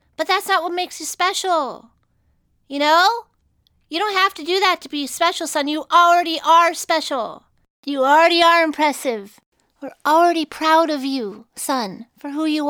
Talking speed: 170 wpm